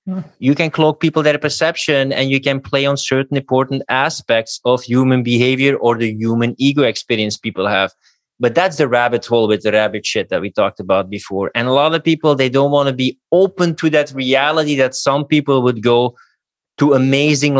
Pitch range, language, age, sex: 115-140 Hz, English, 20-39, male